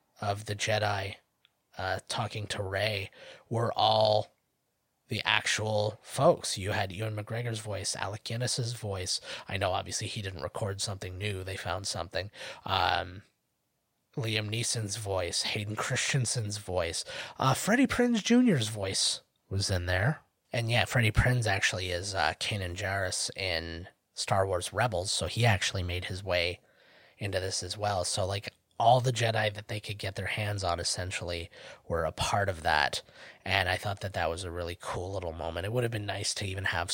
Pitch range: 95-115 Hz